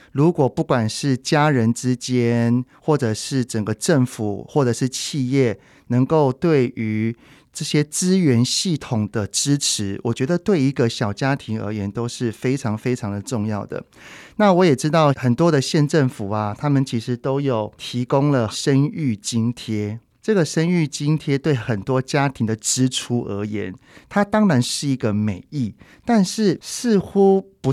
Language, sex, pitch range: Chinese, male, 115-155 Hz